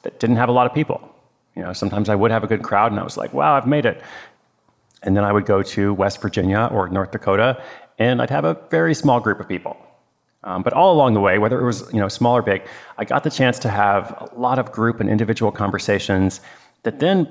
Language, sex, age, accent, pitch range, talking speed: English, male, 30-49, American, 100-125 Hz, 255 wpm